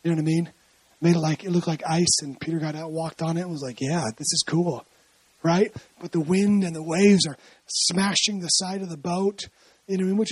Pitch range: 175-220 Hz